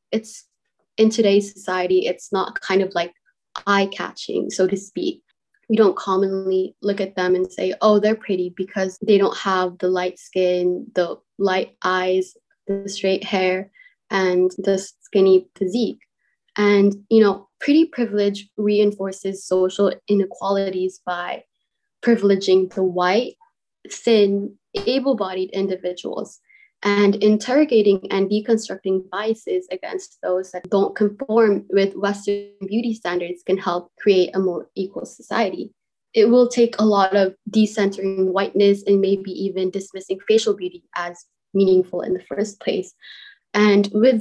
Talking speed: 135 wpm